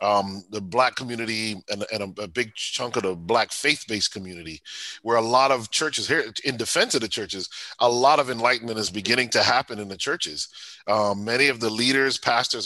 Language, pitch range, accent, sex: English, 110-140 Hz, American, male